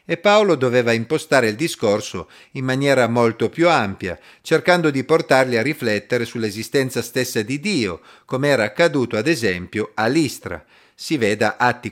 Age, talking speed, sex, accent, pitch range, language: 40-59, 150 wpm, male, native, 110-170 Hz, Italian